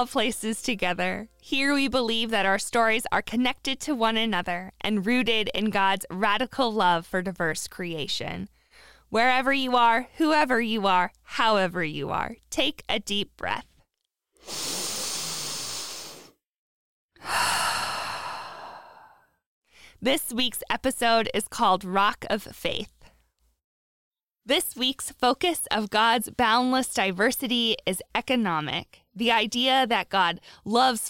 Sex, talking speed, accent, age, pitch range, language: female, 110 wpm, American, 20-39, 195-250 Hz, English